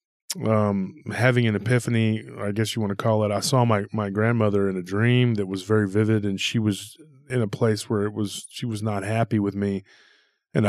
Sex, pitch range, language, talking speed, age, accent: male, 105-130 Hz, English, 220 wpm, 20-39, American